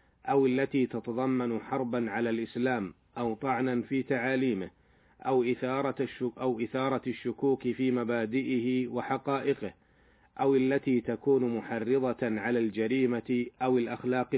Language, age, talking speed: Arabic, 40-59, 110 wpm